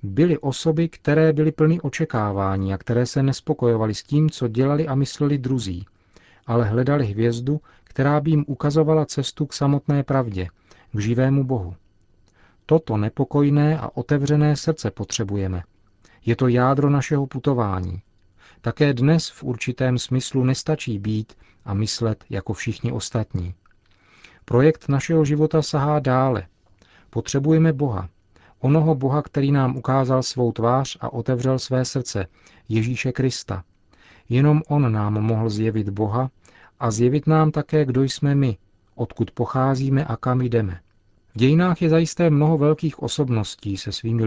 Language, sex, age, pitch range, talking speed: Czech, male, 40-59, 105-145 Hz, 135 wpm